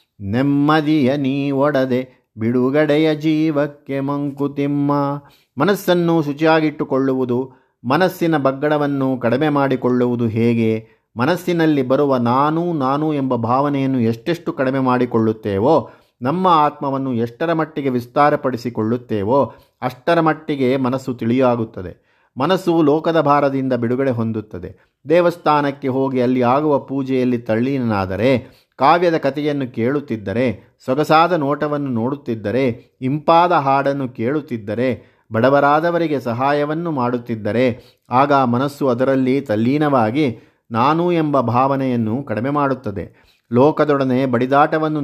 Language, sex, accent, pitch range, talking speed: Kannada, male, native, 125-145 Hz, 85 wpm